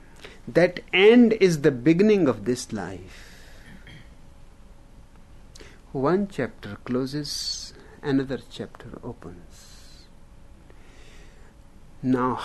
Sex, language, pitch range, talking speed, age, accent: male, English, 105-155 Hz, 70 wpm, 60-79, Indian